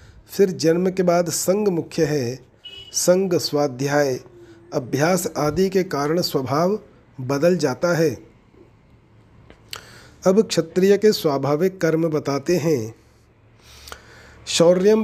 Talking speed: 100 wpm